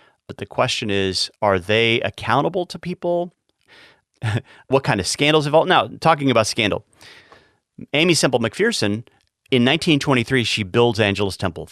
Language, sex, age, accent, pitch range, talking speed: English, male, 30-49, American, 105-150 Hz, 145 wpm